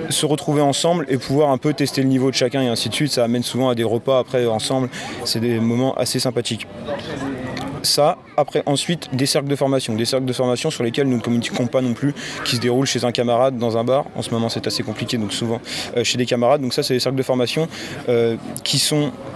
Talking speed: 245 wpm